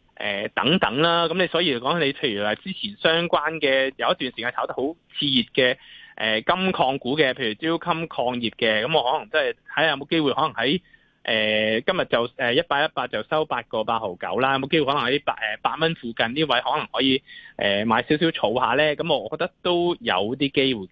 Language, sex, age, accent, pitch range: Chinese, male, 20-39, native, 115-165 Hz